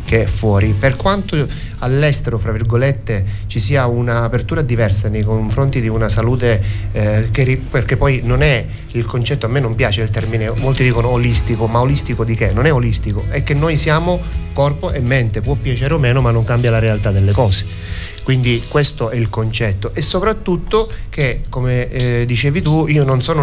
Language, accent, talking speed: Italian, native, 190 wpm